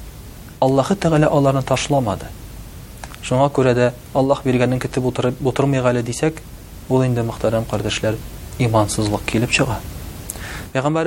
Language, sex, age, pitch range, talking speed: Russian, male, 40-59, 110-145 Hz, 100 wpm